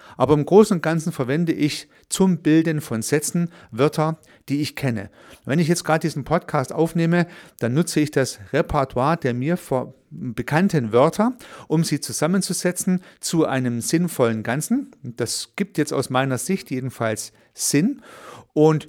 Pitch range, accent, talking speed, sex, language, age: 125-160 Hz, German, 150 wpm, male, German, 40-59